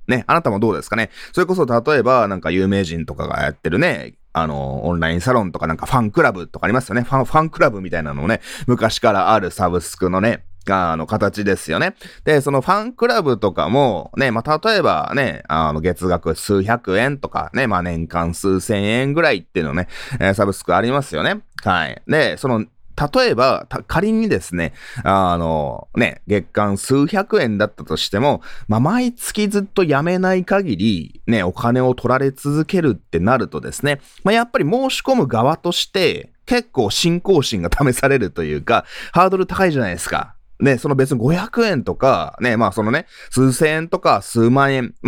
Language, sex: Japanese, male